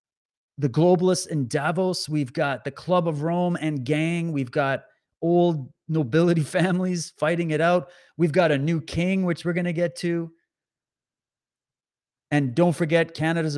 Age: 30-49